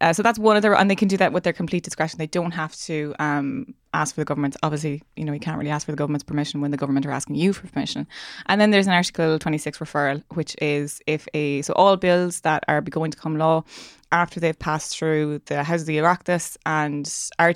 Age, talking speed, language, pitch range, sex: 20-39, 255 wpm, English, 150-170 Hz, female